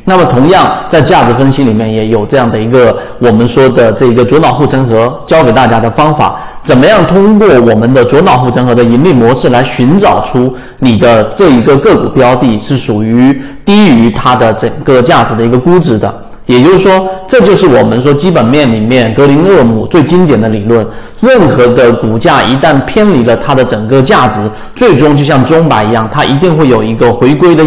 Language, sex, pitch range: Chinese, male, 115-150 Hz